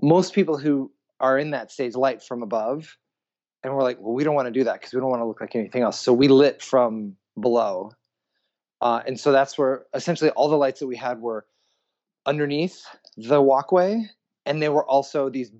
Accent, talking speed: American, 210 wpm